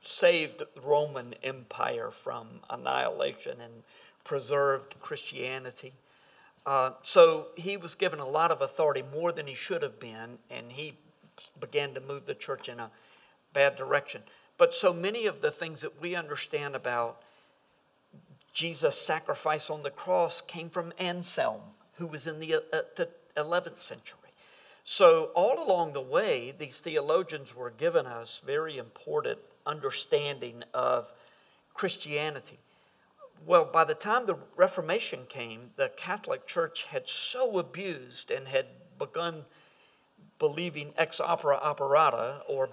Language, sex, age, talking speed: English, male, 50-69, 135 wpm